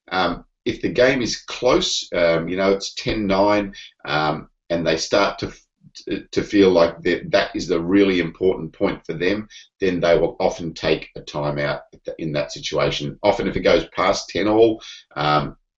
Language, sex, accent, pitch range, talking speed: English, male, Australian, 80-100 Hz, 180 wpm